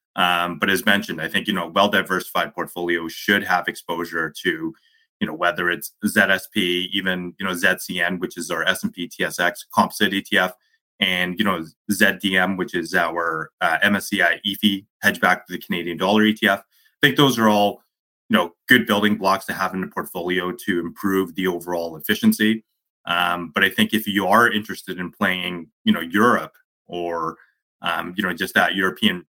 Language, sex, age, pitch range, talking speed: English, male, 30-49, 90-110 Hz, 175 wpm